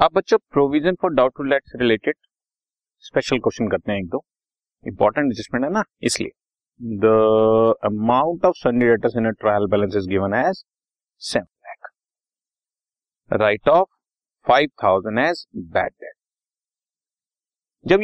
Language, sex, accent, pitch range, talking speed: Hindi, male, native, 115-170 Hz, 130 wpm